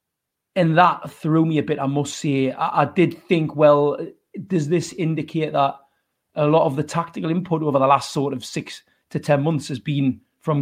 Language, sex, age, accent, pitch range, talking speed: English, male, 30-49, British, 145-175 Hz, 205 wpm